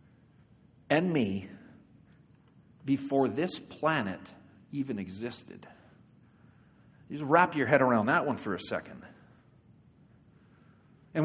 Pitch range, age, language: 145-190 Hz, 50-69, English